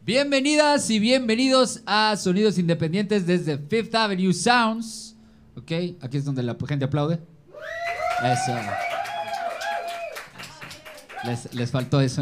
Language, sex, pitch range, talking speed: Spanish, male, 120-185 Hz, 110 wpm